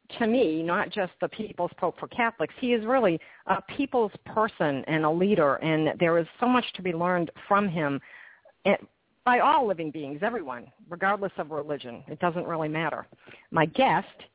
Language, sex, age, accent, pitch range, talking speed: English, female, 50-69, American, 160-200 Hz, 175 wpm